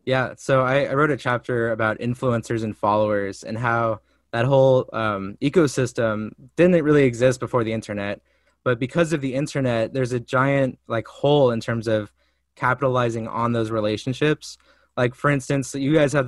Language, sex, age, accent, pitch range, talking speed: English, male, 20-39, American, 115-140 Hz, 170 wpm